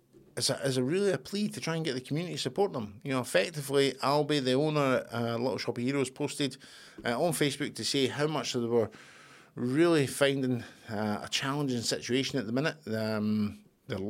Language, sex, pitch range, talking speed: English, male, 105-135 Hz, 210 wpm